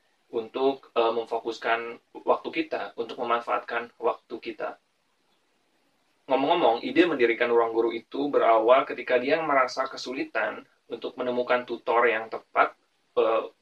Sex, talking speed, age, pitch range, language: male, 115 wpm, 20-39, 115-135 Hz, Indonesian